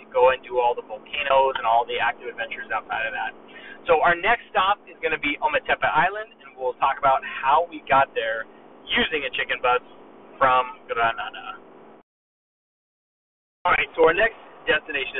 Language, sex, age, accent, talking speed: English, male, 30-49, American, 175 wpm